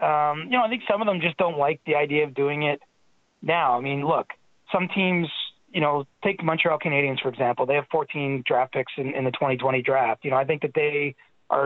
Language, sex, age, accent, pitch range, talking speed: English, male, 20-39, American, 135-165 Hz, 235 wpm